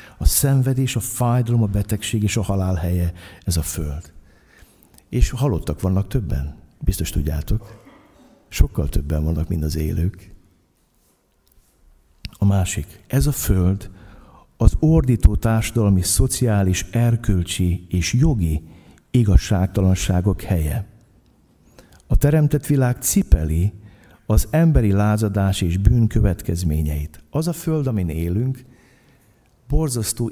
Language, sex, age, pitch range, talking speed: Hungarian, male, 60-79, 90-120 Hz, 105 wpm